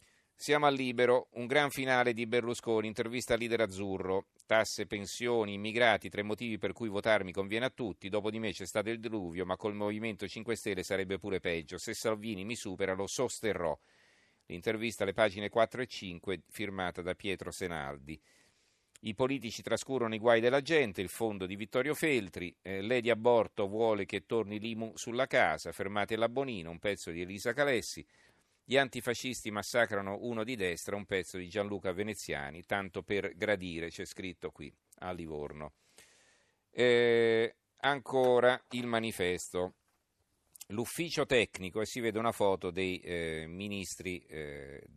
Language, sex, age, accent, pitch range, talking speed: Italian, male, 40-59, native, 90-115 Hz, 155 wpm